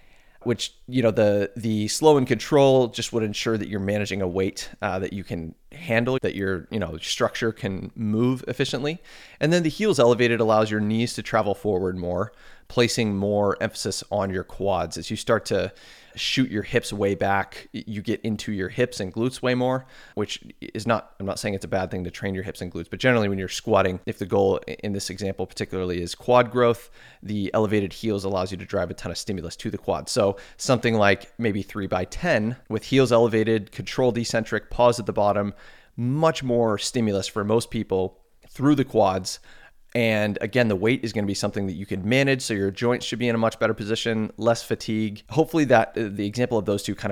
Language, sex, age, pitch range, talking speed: English, male, 30-49, 95-120 Hz, 215 wpm